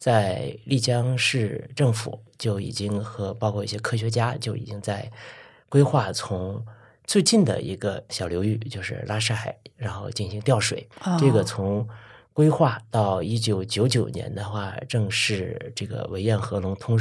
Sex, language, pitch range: male, Chinese, 105-135 Hz